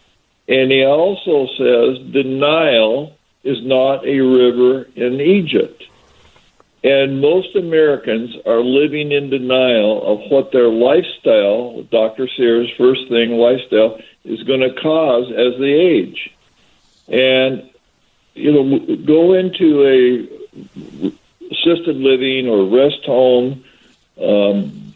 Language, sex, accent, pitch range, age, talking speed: English, male, American, 120-150 Hz, 60-79, 110 wpm